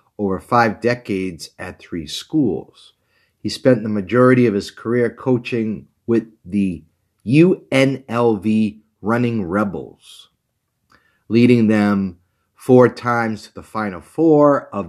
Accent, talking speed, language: American, 115 wpm, English